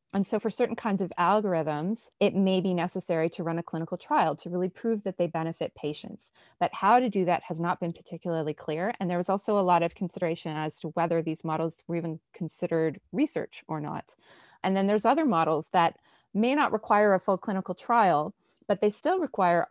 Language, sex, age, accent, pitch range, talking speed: English, female, 30-49, American, 165-205 Hz, 210 wpm